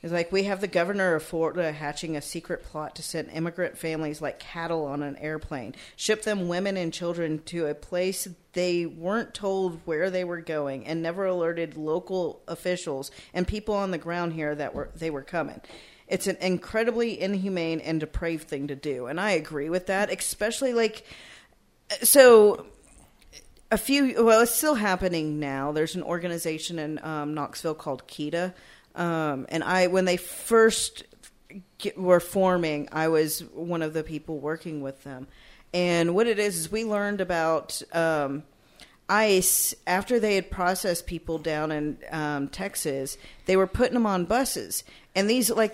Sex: female